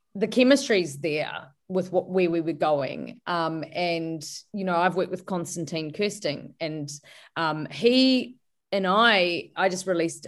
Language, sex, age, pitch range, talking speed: English, female, 30-49, 165-205 Hz, 150 wpm